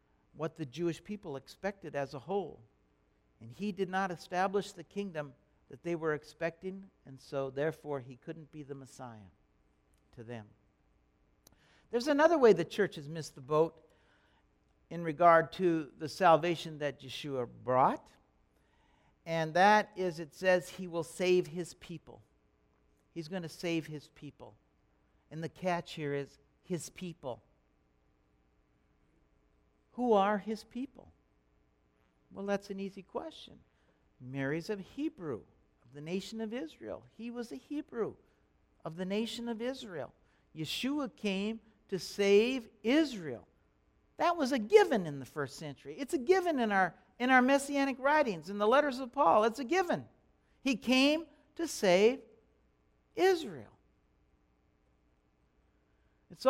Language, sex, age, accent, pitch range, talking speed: English, male, 60-79, American, 135-225 Hz, 140 wpm